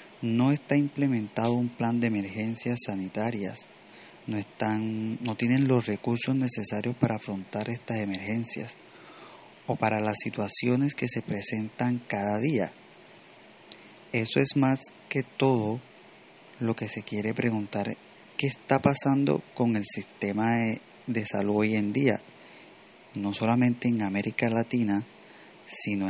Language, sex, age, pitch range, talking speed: English, male, 30-49, 105-125 Hz, 130 wpm